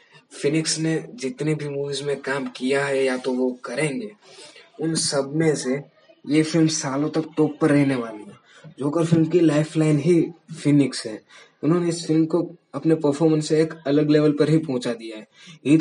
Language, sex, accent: Hindi, male, native